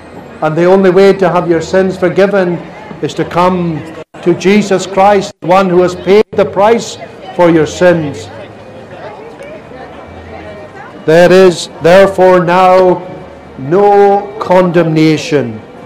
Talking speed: 115 wpm